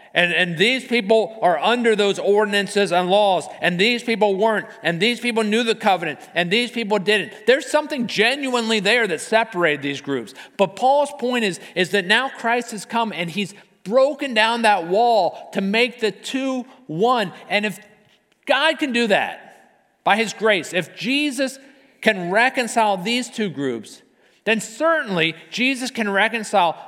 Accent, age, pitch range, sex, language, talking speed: American, 50-69, 175-230 Hz, male, English, 165 wpm